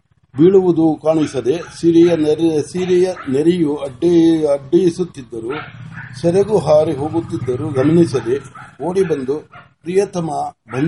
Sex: male